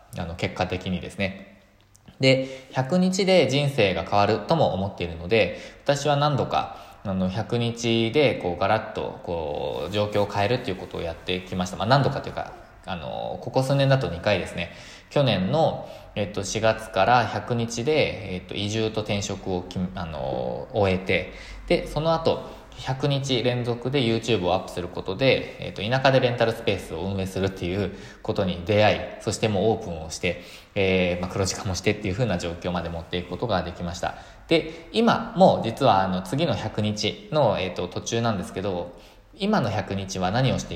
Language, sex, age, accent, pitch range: Japanese, male, 20-39, native, 90-125 Hz